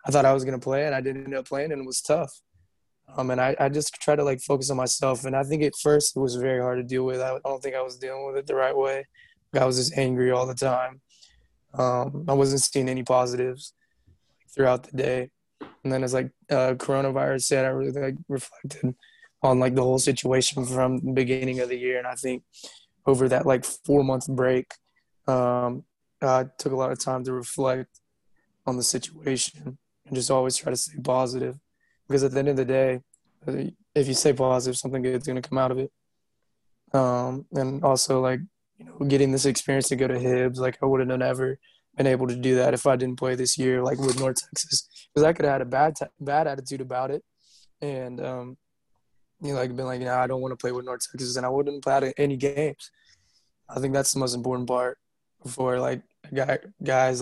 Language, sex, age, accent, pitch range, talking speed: English, male, 20-39, American, 125-135 Hz, 225 wpm